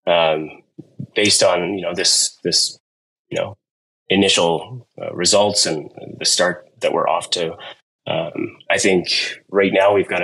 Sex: male